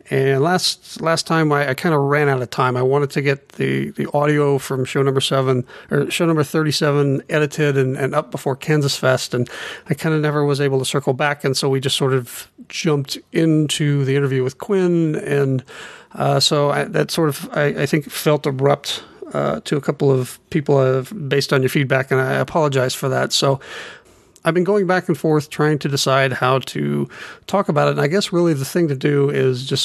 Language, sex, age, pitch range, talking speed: English, male, 40-59, 135-155 Hz, 220 wpm